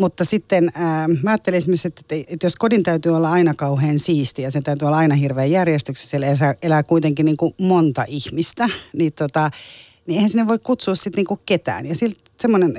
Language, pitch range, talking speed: Finnish, 145-180 Hz, 190 wpm